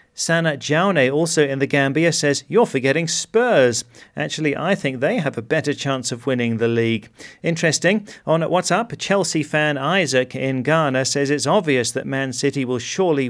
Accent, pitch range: British, 125-155 Hz